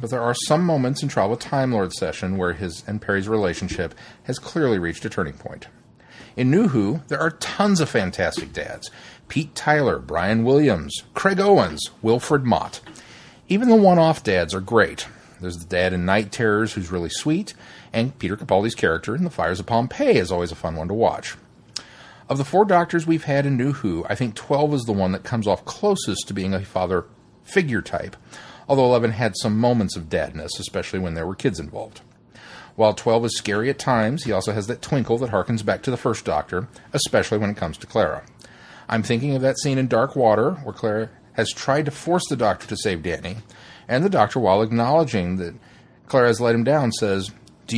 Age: 40-59